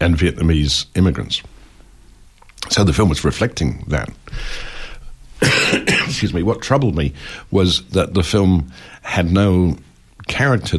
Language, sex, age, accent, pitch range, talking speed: English, male, 60-79, British, 80-100 Hz, 115 wpm